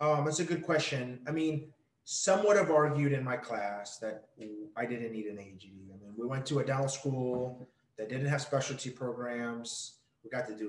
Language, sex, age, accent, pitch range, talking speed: English, male, 30-49, American, 115-140 Hz, 210 wpm